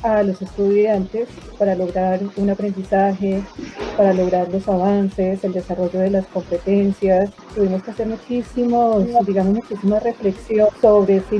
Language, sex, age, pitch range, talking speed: Spanish, female, 40-59, 195-225 Hz, 130 wpm